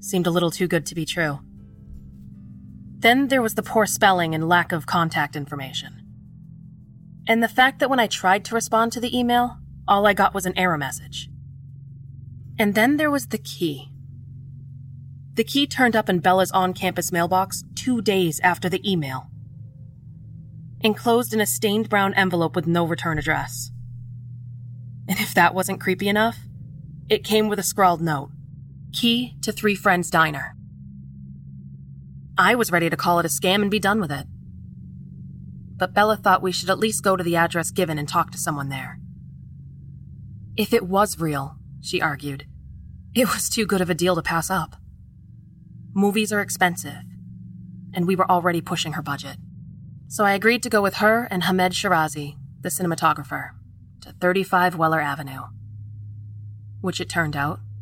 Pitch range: 135-195 Hz